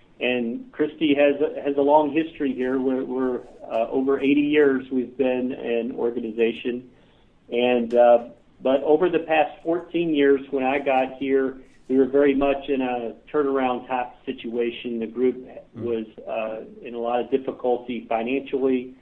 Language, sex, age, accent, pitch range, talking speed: English, male, 50-69, American, 115-135 Hz, 160 wpm